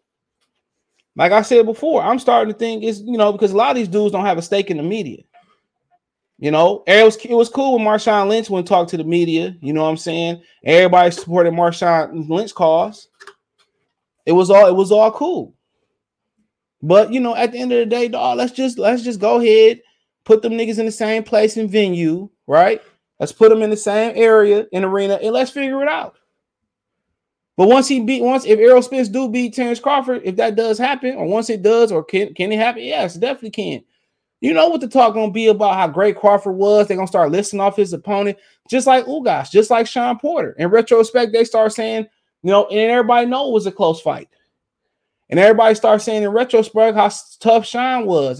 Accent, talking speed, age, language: American, 220 wpm, 20-39, English